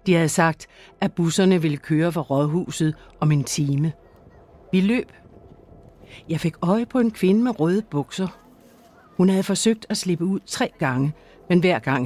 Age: 60-79